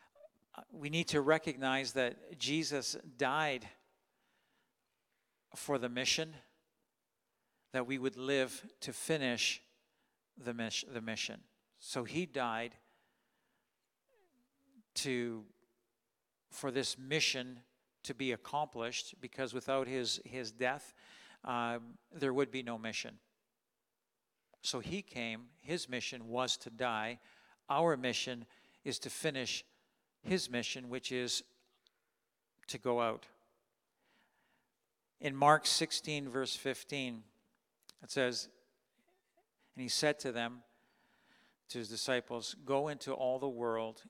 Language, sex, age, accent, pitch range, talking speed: English, male, 50-69, American, 120-140 Hz, 110 wpm